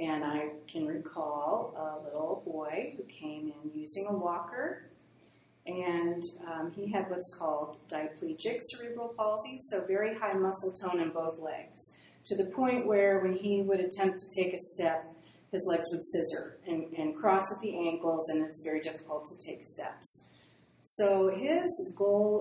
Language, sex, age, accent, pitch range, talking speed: English, female, 30-49, American, 160-195 Hz, 165 wpm